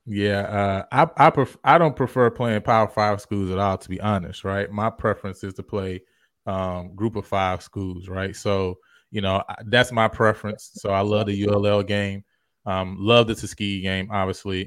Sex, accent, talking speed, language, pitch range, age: male, American, 195 wpm, English, 95-115 Hz, 20-39